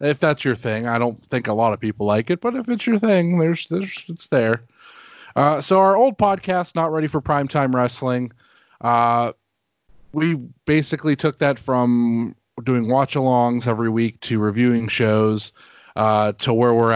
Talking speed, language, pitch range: 180 wpm, English, 110-145 Hz